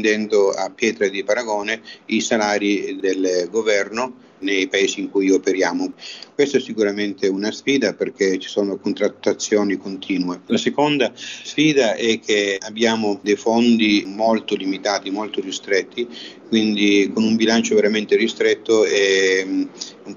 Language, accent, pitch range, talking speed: Italian, native, 100-135 Hz, 130 wpm